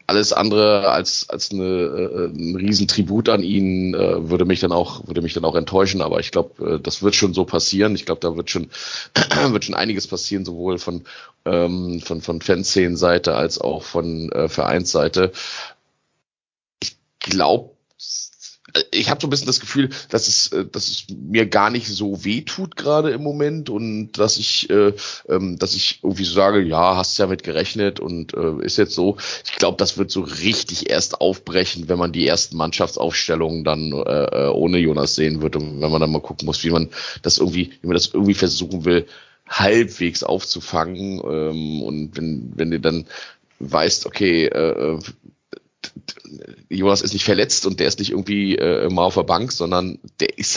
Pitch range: 85-105 Hz